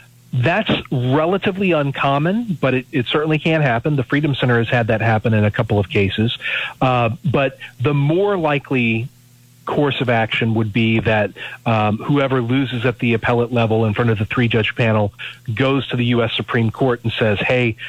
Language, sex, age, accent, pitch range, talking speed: English, male, 40-59, American, 115-150 Hz, 180 wpm